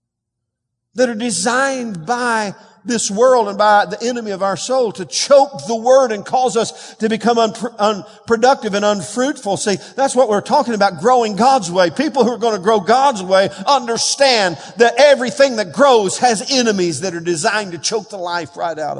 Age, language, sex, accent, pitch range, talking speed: 50-69, English, male, American, 135-215 Hz, 180 wpm